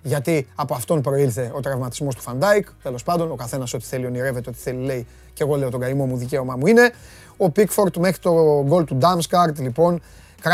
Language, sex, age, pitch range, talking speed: Greek, male, 30-49, 160-210 Hz, 155 wpm